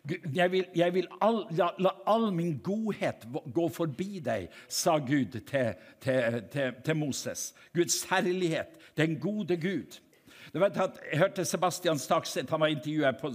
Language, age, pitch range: English, 60-79, 150-195 Hz